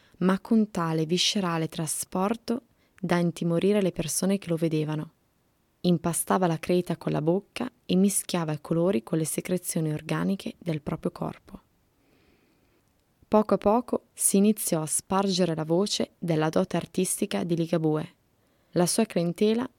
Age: 20-39